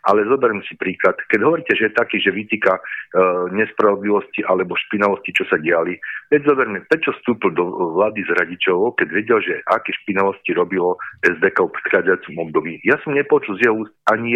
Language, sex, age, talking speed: Slovak, male, 40-59, 170 wpm